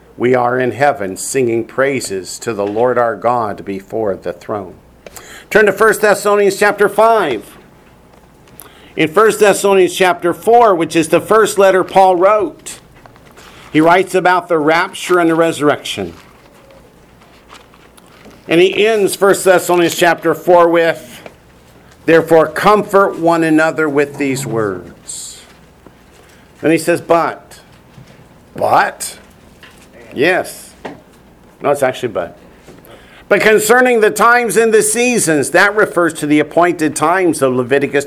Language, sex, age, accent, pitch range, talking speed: English, male, 50-69, American, 145-190 Hz, 130 wpm